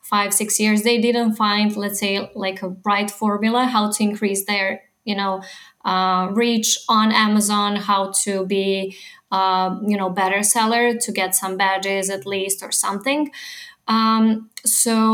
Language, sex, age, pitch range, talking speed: English, female, 20-39, 200-225 Hz, 160 wpm